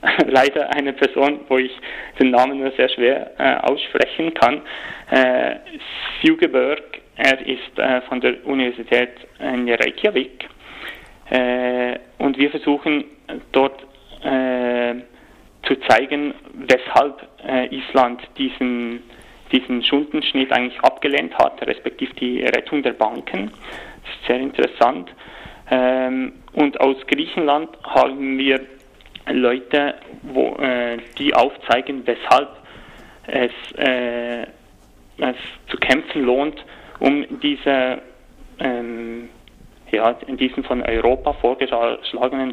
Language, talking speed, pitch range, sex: German, 110 wpm, 125-140 Hz, male